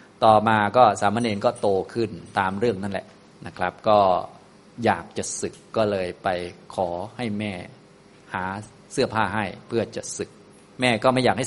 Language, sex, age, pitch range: Thai, male, 20-39, 100-120 Hz